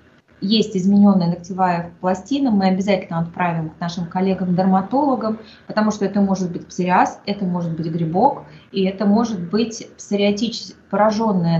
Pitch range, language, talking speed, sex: 165-200 Hz, Russian, 135 wpm, female